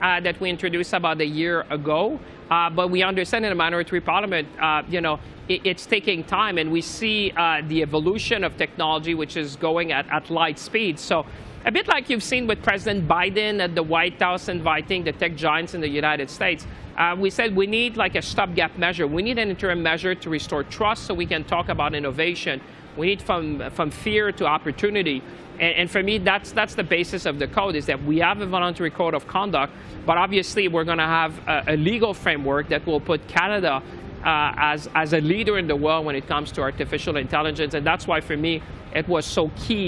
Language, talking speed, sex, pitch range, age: English, 215 wpm, male, 155-185 Hz, 40-59